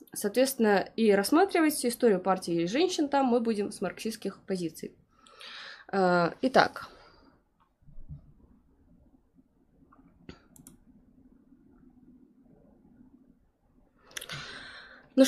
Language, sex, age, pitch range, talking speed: Russian, female, 20-39, 185-245 Hz, 65 wpm